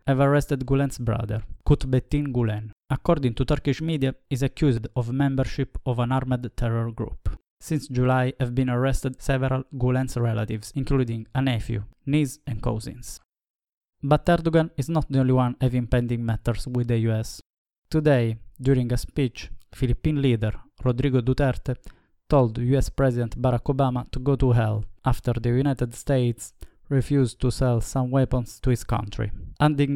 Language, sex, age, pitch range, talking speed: English, male, 20-39, 120-135 Hz, 150 wpm